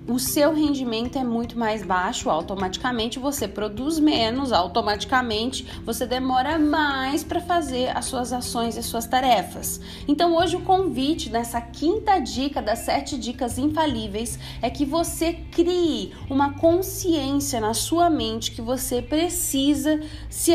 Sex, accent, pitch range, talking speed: female, Brazilian, 230-300 Hz, 135 wpm